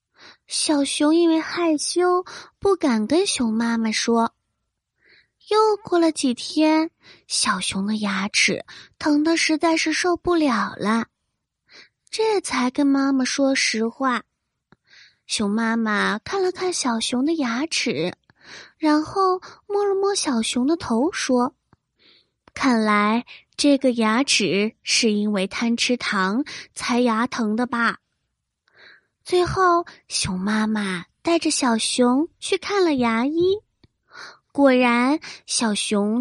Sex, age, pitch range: female, 20-39, 230-320 Hz